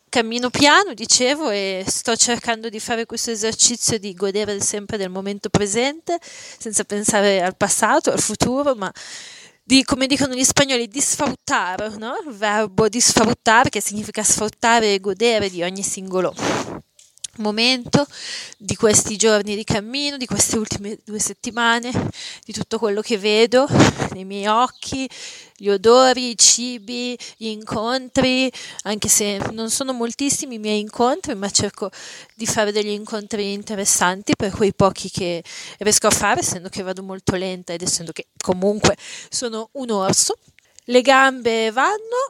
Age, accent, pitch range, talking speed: 30-49, native, 200-245 Hz, 145 wpm